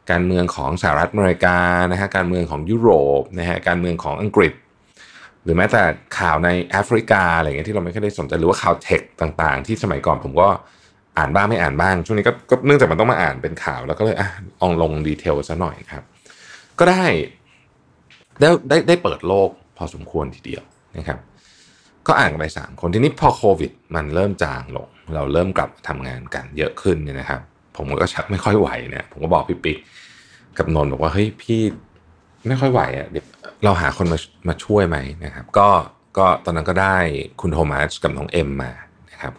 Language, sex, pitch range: Thai, male, 80-110 Hz